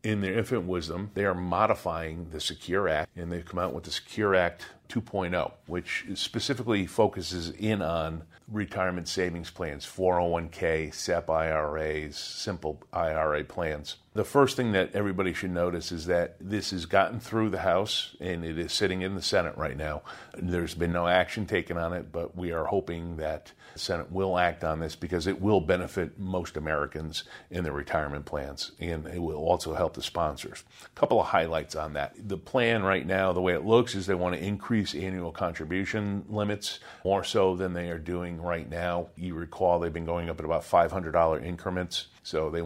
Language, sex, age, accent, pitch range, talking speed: English, male, 50-69, American, 85-100 Hz, 190 wpm